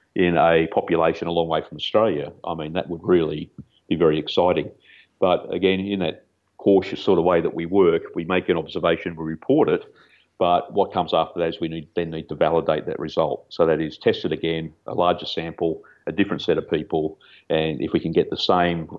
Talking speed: 215 wpm